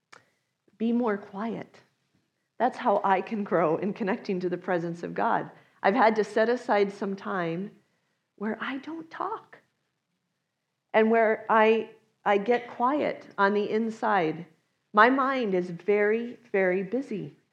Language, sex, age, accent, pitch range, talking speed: English, female, 40-59, American, 180-225 Hz, 140 wpm